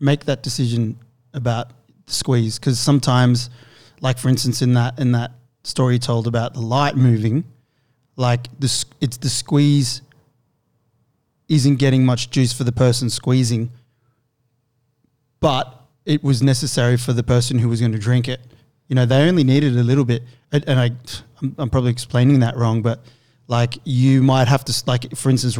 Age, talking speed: 20-39, 165 wpm